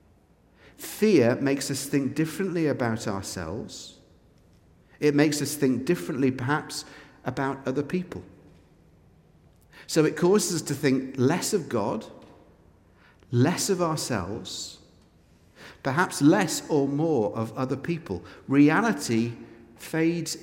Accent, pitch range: British, 105-150 Hz